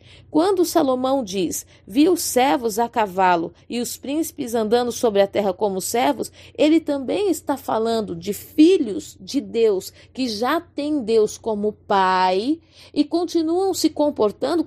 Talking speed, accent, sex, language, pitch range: 145 wpm, Brazilian, female, Portuguese, 240-325 Hz